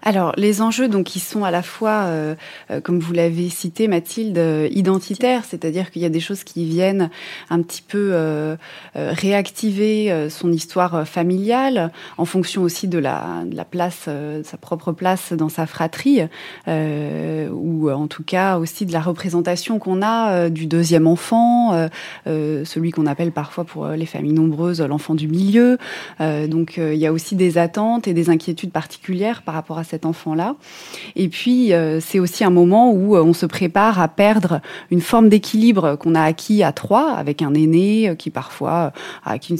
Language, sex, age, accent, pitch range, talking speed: French, female, 20-39, French, 160-195 Hz, 180 wpm